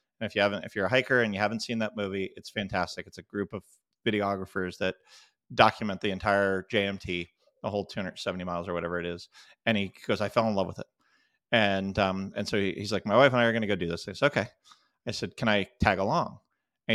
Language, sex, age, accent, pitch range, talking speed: English, male, 30-49, American, 95-115 Hz, 245 wpm